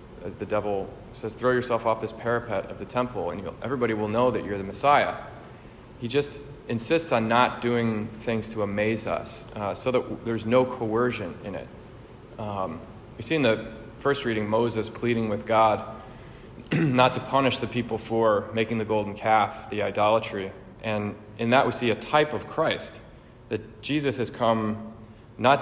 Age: 30-49